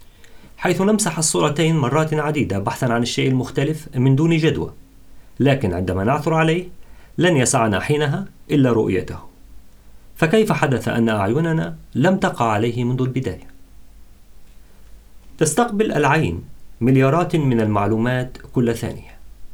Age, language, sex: 40-59, English, male